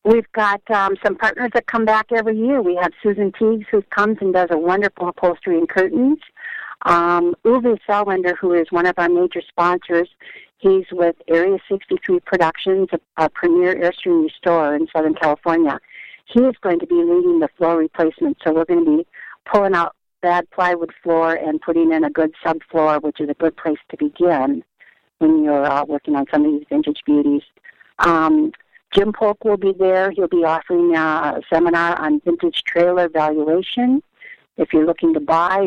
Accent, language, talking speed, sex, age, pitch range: American, English, 180 wpm, female, 50-69, 160-220 Hz